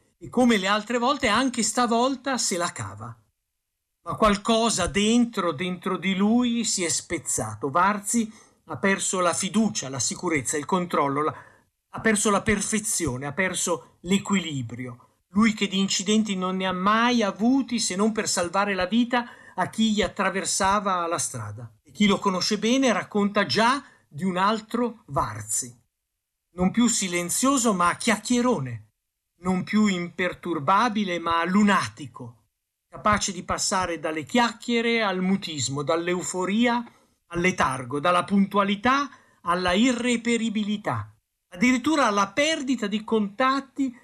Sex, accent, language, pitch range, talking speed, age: male, native, Italian, 170-235 Hz, 130 wpm, 50-69